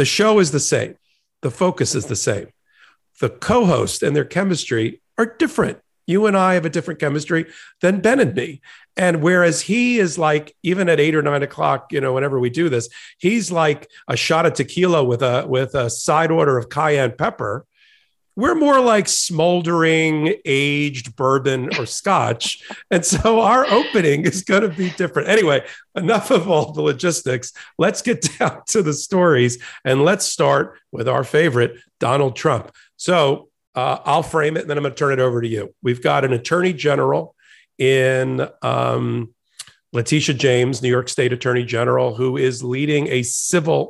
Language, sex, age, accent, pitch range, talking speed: English, male, 50-69, American, 125-165 Hz, 180 wpm